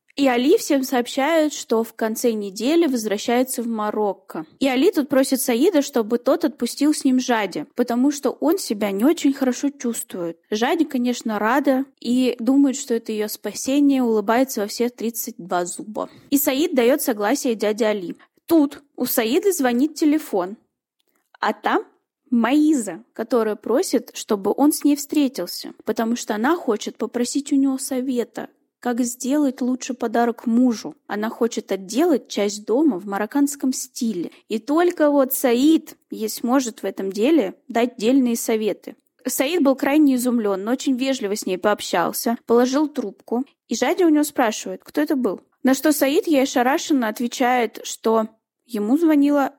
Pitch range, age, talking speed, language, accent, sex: 225-285 Hz, 20-39, 155 wpm, Russian, native, female